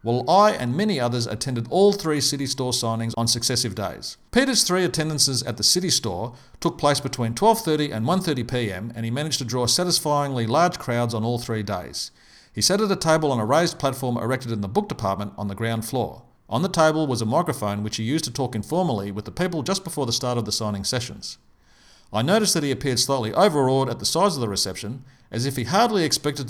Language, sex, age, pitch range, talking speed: English, male, 50-69, 115-160 Hz, 220 wpm